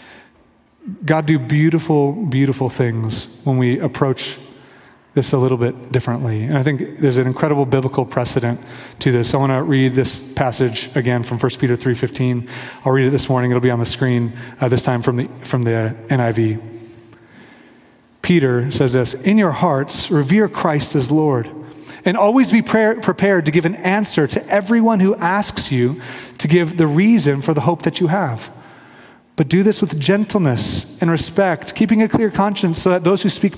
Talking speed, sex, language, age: 180 wpm, male, English, 30-49